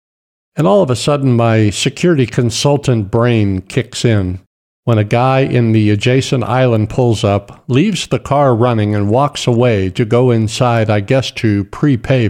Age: 50-69